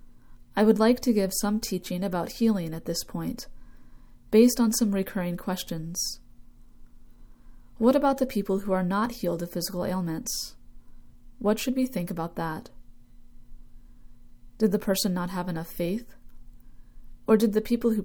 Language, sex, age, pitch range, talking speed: English, female, 30-49, 170-225 Hz, 155 wpm